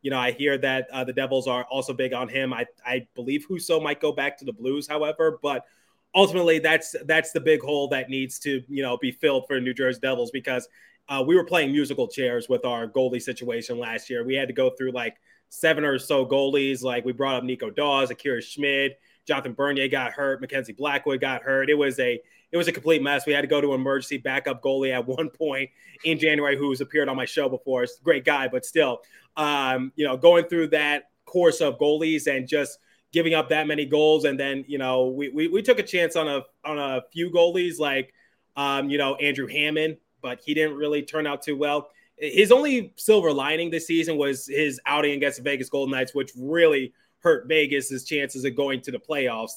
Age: 20-39